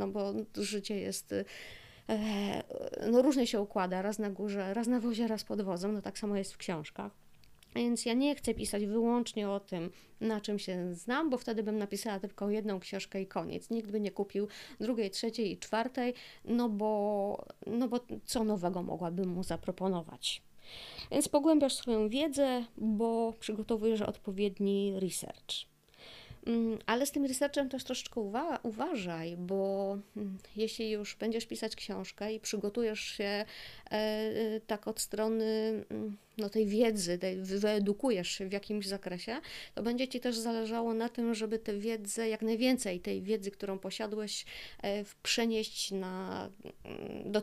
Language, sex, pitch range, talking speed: Polish, female, 200-230 Hz, 145 wpm